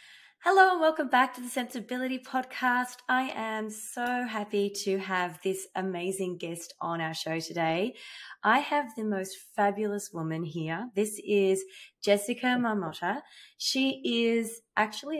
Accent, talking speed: Australian, 140 wpm